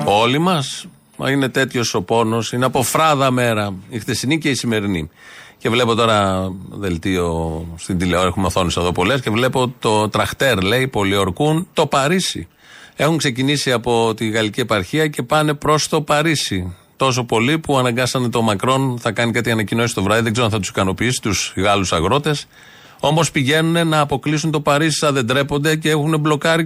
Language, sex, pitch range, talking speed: Greek, male, 115-160 Hz, 175 wpm